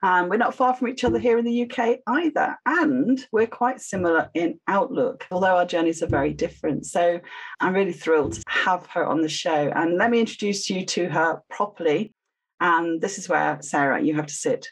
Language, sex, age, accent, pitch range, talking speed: English, female, 40-59, British, 160-225 Hz, 210 wpm